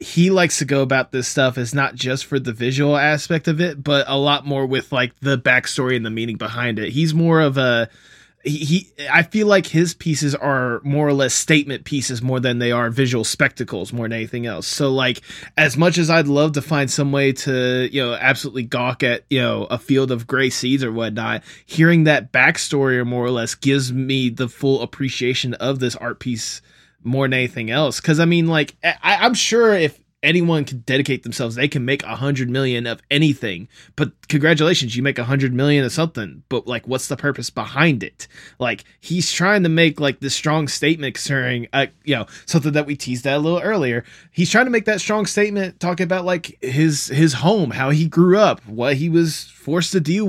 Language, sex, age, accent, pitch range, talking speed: English, male, 20-39, American, 125-160 Hz, 215 wpm